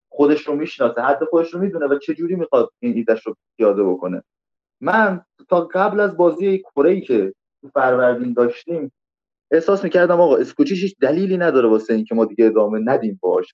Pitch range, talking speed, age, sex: 130-180 Hz, 185 wpm, 30-49, male